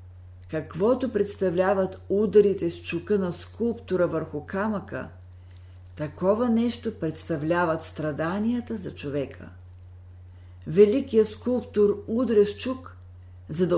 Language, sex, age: Bulgarian, female, 50-69